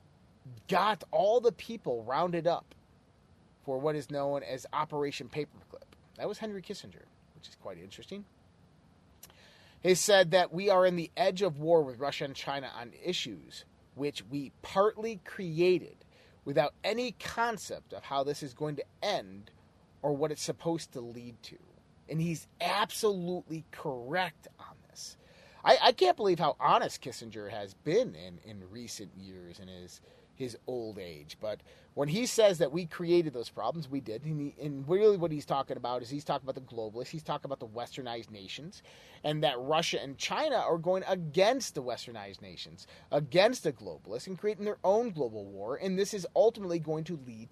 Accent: American